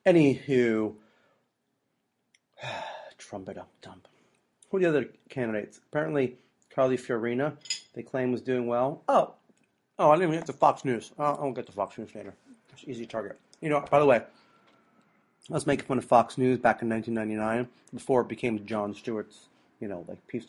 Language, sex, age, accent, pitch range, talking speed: English, male, 30-49, American, 110-130 Hz, 175 wpm